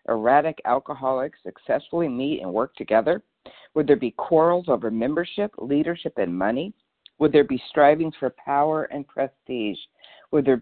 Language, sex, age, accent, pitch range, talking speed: English, female, 60-79, American, 135-170 Hz, 145 wpm